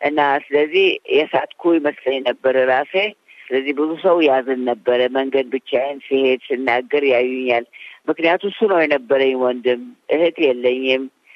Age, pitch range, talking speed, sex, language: 50-69, 130-170 Hz, 120 wpm, female, Amharic